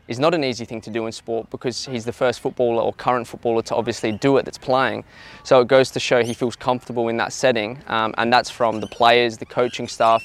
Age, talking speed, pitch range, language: 20-39, 250 wpm, 115-125 Hz, English